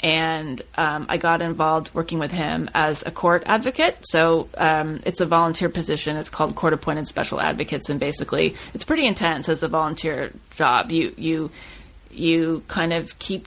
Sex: female